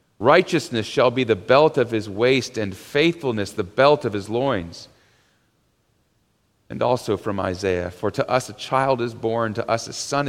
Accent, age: American, 40-59